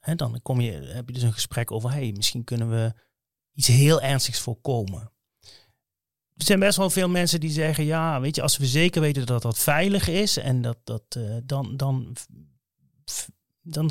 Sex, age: male, 30-49